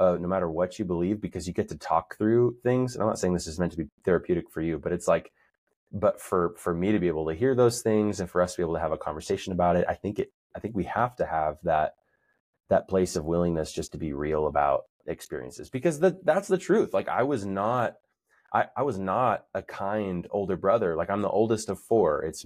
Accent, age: American, 20-39